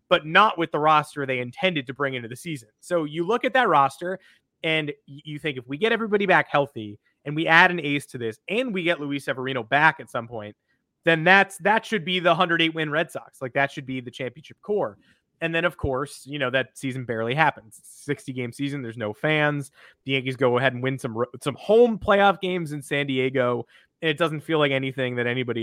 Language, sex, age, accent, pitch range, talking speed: English, male, 30-49, American, 135-170 Hz, 225 wpm